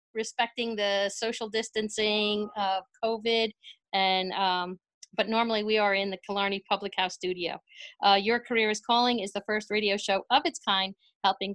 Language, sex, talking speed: English, female, 165 wpm